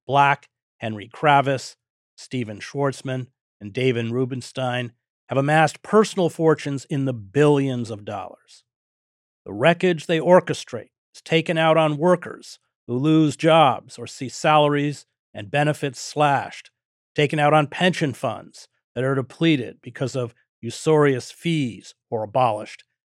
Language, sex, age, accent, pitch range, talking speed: English, male, 40-59, American, 125-160 Hz, 125 wpm